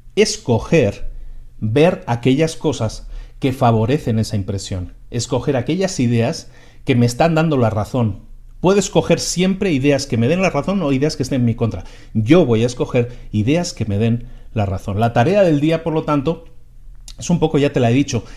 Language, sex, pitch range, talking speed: Spanish, male, 115-155 Hz, 190 wpm